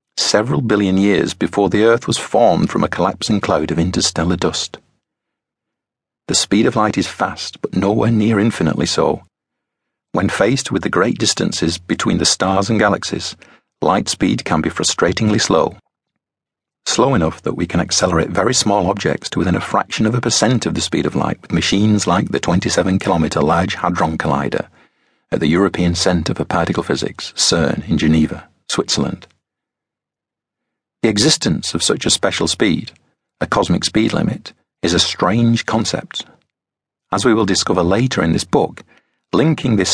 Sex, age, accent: male, 40-59, British